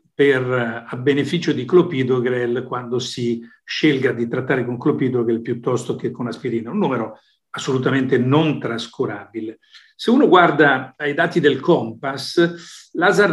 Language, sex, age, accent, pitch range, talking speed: English, male, 50-69, Italian, 125-155 Hz, 130 wpm